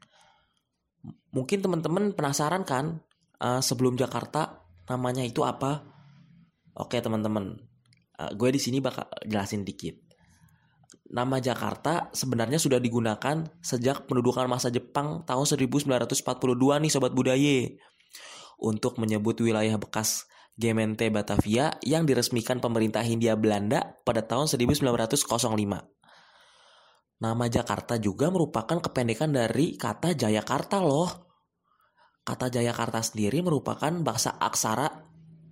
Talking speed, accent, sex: 105 wpm, native, male